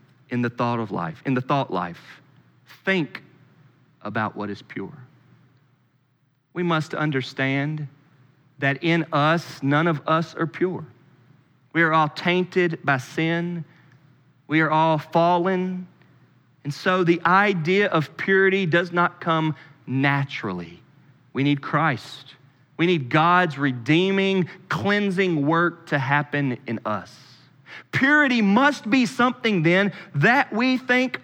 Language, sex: English, male